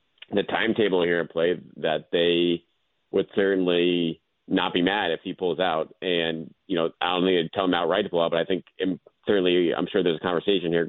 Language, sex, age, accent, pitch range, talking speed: English, male, 30-49, American, 80-95 Hz, 215 wpm